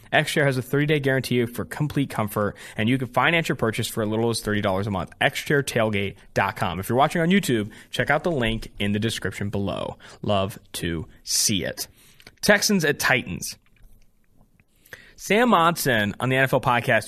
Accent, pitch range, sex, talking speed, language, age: American, 110-145 Hz, male, 170 wpm, English, 20-39